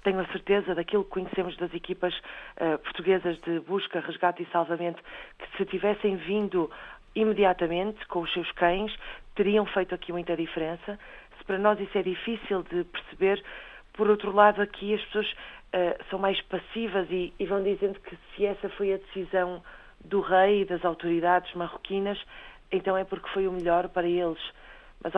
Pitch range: 175-200 Hz